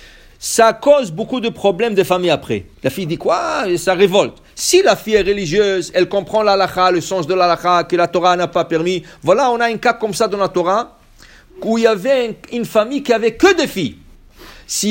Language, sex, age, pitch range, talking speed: English, male, 50-69, 150-235 Hz, 225 wpm